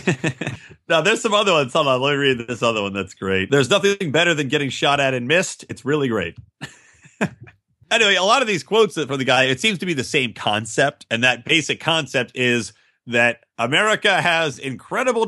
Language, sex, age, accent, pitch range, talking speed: English, male, 30-49, American, 120-160 Hz, 195 wpm